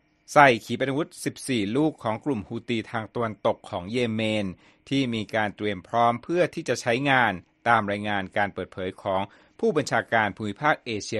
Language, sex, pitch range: Thai, male, 105-140 Hz